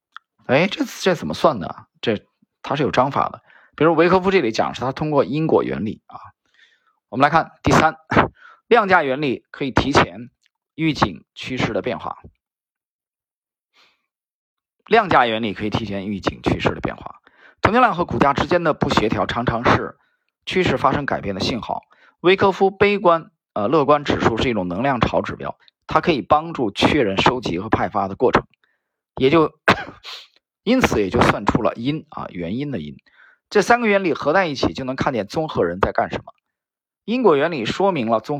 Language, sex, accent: Chinese, male, native